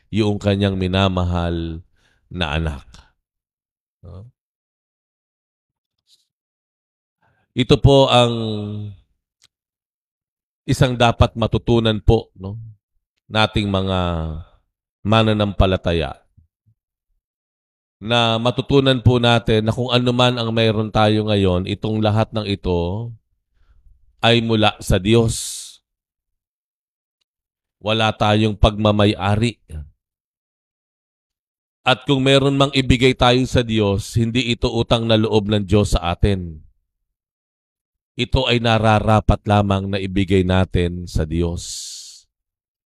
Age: 50-69